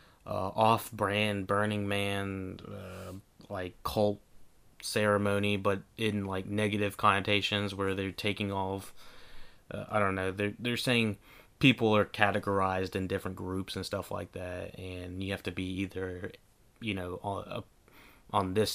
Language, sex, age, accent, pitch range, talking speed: English, male, 30-49, American, 95-115 Hz, 145 wpm